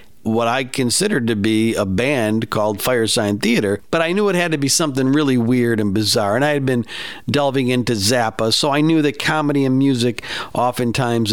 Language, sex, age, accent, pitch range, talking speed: English, male, 50-69, American, 110-145 Hz, 195 wpm